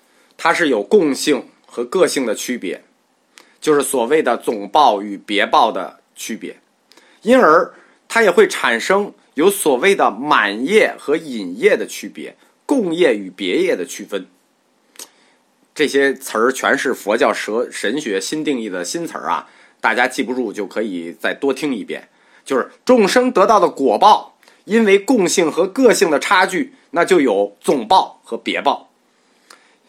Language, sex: Chinese, male